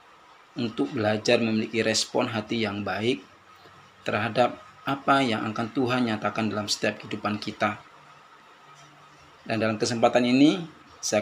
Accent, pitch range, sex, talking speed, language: native, 110-125 Hz, male, 120 wpm, Indonesian